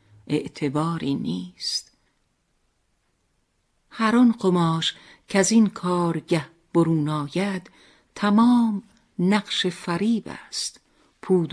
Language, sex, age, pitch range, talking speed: Persian, female, 50-69, 170-220 Hz, 85 wpm